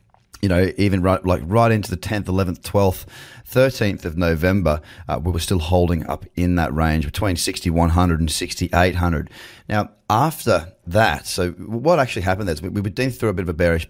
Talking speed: 190 wpm